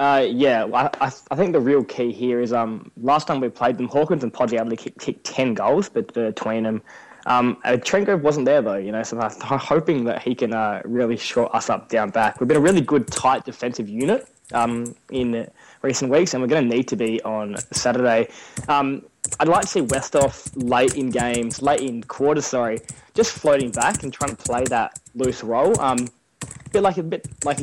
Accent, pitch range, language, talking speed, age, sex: Australian, 115-135 Hz, English, 210 wpm, 10-29, male